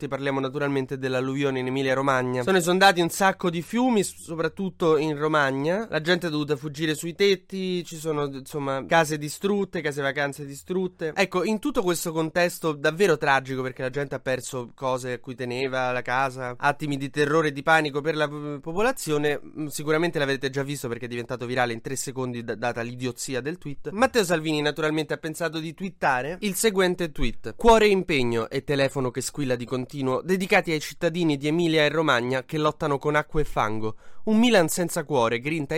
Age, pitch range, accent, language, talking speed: 20-39, 130-170 Hz, native, Italian, 185 wpm